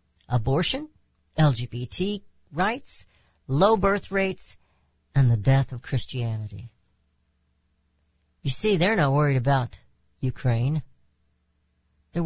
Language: English